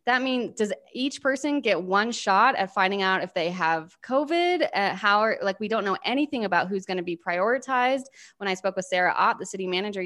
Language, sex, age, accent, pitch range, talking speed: English, female, 20-39, American, 180-220 Hz, 225 wpm